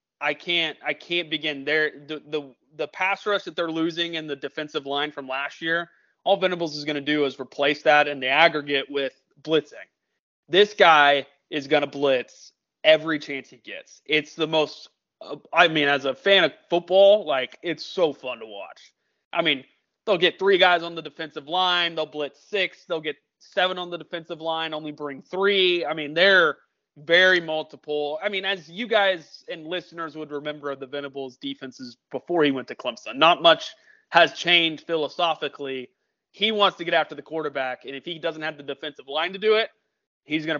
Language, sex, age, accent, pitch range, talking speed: English, male, 20-39, American, 145-175 Hz, 195 wpm